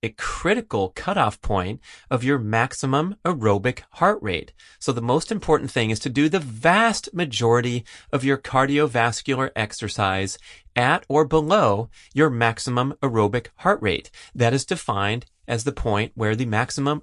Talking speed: 150 wpm